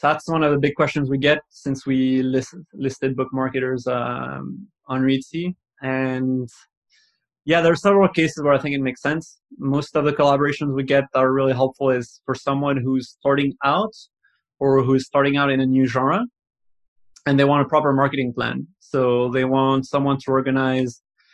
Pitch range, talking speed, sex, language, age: 130-145 Hz, 185 wpm, male, English, 30-49